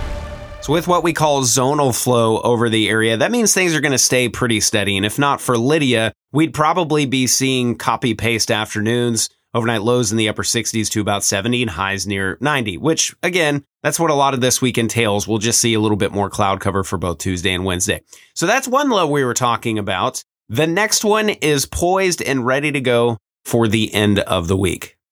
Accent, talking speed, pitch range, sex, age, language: American, 215 wpm, 110-145 Hz, male, 30-49, English